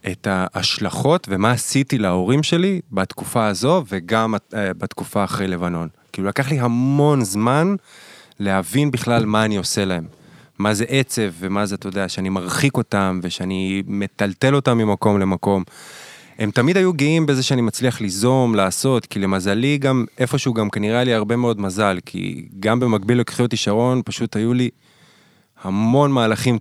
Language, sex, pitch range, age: Hebrew, male, 100-125 Hz, 20-39